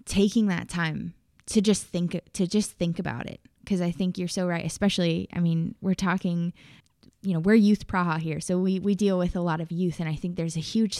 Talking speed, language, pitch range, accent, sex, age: 235 wpm, English, 170-205 Hz, American, female, 20-39